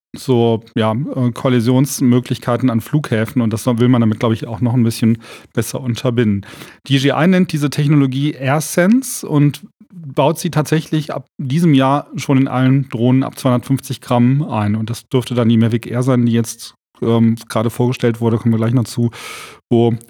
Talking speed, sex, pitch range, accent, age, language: 170 wpm, male, 120-150 Hz, German, 40-59, German